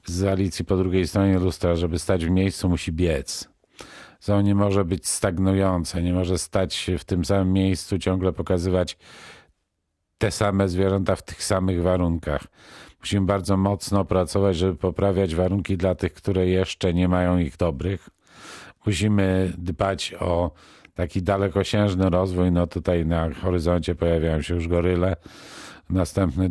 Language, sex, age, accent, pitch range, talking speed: Polish, male, 50-69, native, 85-100 Hz, 145 wpm